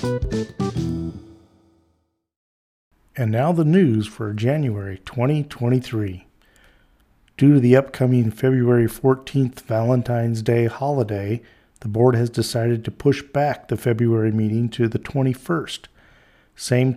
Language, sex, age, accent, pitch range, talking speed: English, male, 50-69, American, 110-130 Hz, 105 wpm